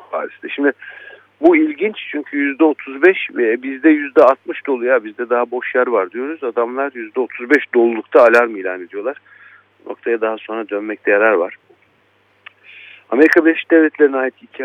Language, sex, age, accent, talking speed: Turkish, male, 50-69, native, 135 wpm